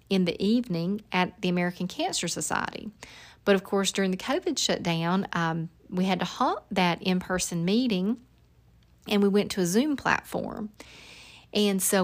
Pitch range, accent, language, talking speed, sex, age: 175-215 Hz, American, English, 160 wpm, female, 40-59